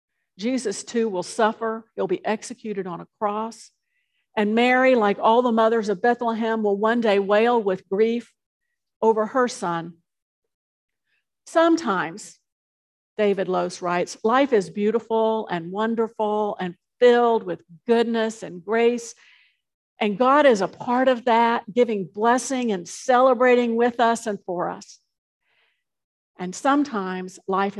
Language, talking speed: English, 130 wpm